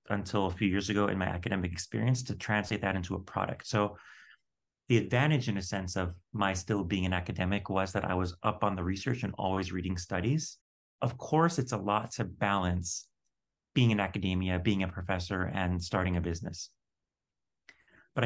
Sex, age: male, 30-49